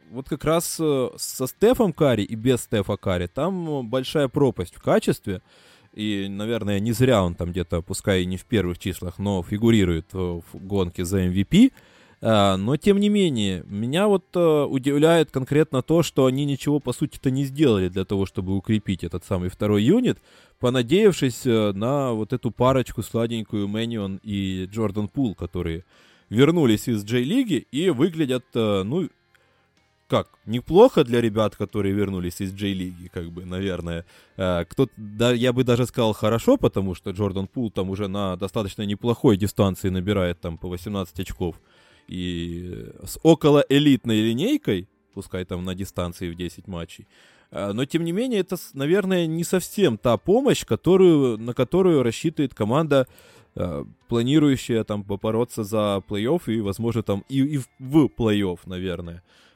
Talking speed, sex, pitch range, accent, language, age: 145 wpm, male, 95-135 Hz, native, Russian, 20-39